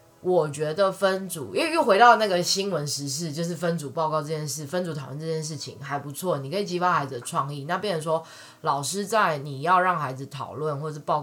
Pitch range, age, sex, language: 135-170 Hz, 20-39, female, Chinese